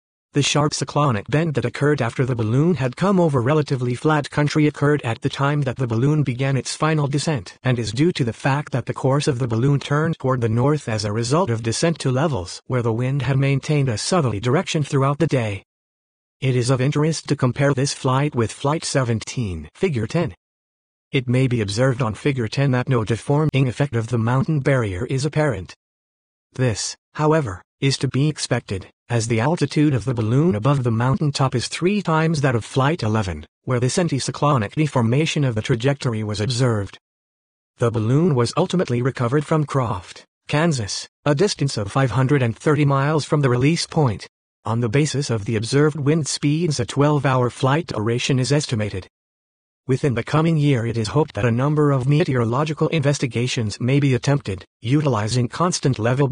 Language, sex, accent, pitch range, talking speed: English, male, American, 120-150 Hz, 180 wpm